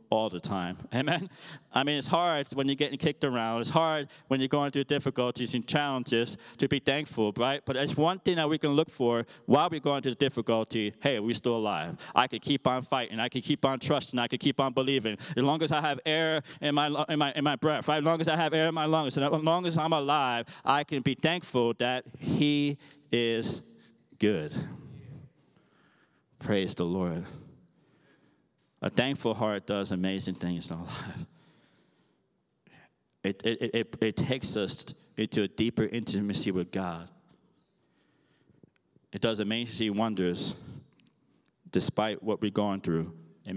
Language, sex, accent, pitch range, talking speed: English, male, American, 105-145 Hz, 180 wpm